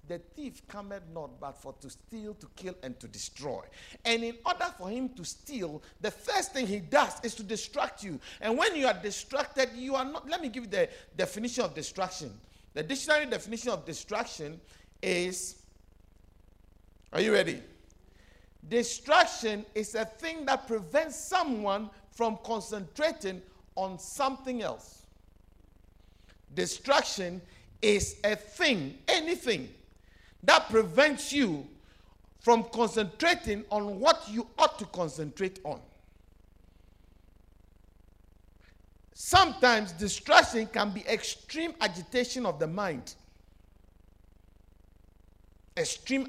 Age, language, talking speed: 50-69, English, 120 wpm